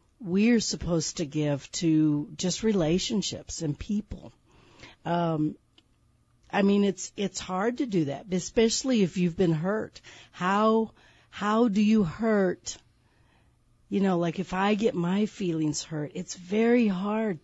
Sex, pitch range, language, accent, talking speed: female, 160-200 Hz, English, American, 140 wpm